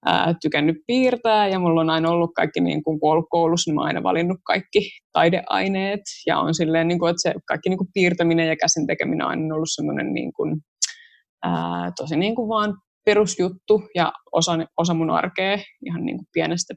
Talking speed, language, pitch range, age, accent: 170 wpm, Finnish, 160-190 Hz, 20-39, native